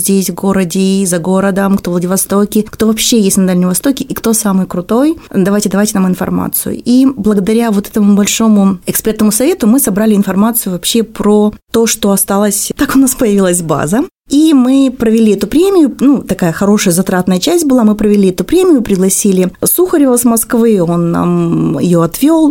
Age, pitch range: 20-39, 190-230 Hz